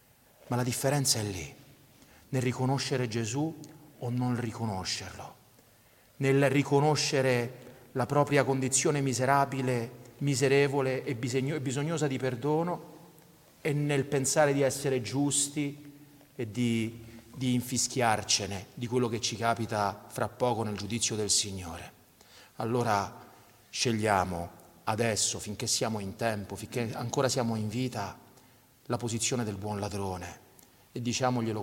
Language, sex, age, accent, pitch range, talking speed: Italian, male, 40-59, native, 110-135 Hz, 120 wpm